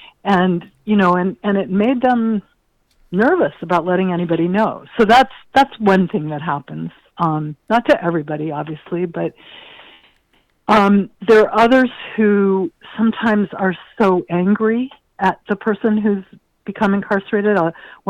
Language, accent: English, American